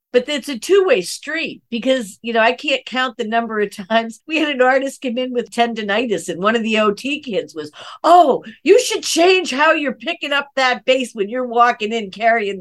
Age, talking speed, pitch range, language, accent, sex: 50-69, 215 wpm, 195-275 Hz, English, American, female